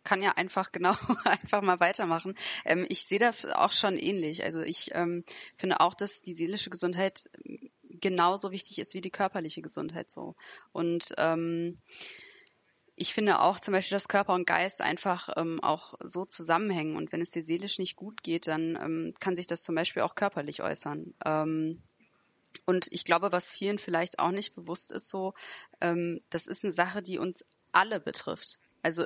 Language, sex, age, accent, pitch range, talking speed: German, female, 20-39, German, 170-195 Hz, 180 wpm